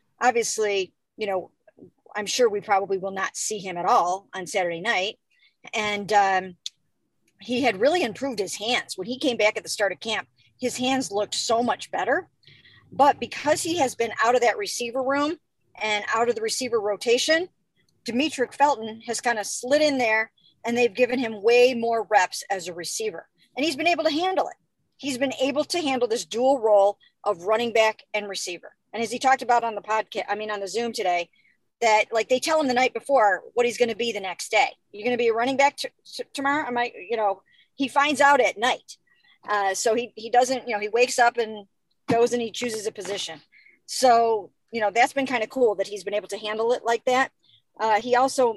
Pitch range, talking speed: 205-255 Hz, 220 wpm